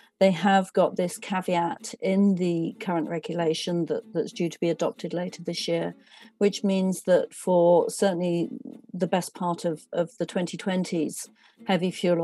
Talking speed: 150 wpm